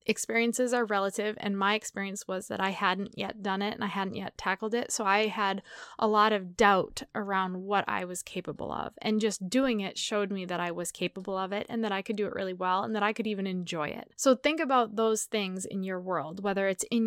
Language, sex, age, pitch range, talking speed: English, female, 20-39, 195-240 Hz, 245 wpm